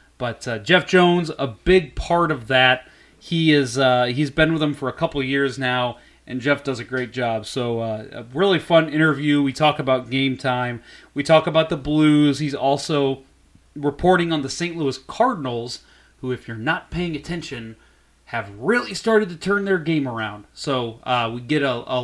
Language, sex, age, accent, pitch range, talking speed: English, male, 30-49, American, 120-160 Hz, 200 wpm